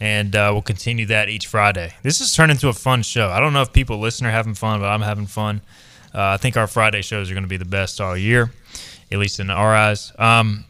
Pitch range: 105-135 Hz